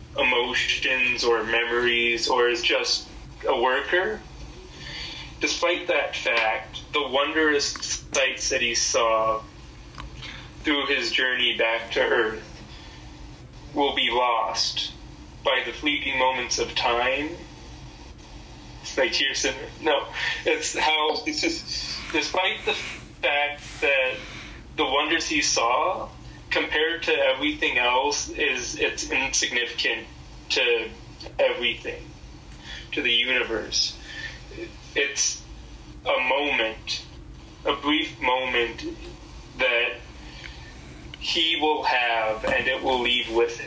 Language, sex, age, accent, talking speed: English, male, 20-39, American, 105 wpm